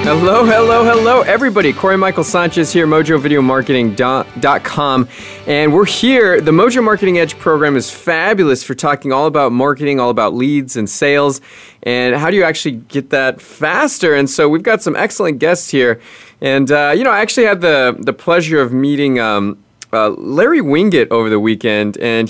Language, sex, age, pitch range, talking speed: English, male, 20-39, 120-160 Hz, 175 wpm